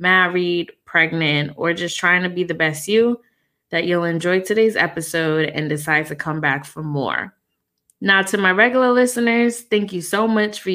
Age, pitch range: 20-39, 165-205 Hz